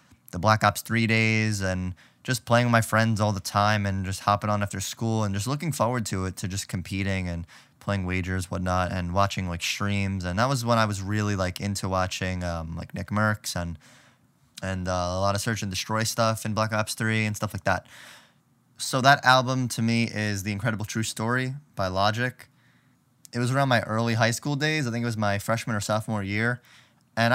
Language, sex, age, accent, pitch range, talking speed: English, male, 20-39, American, 100-120 Hz, 215 wpm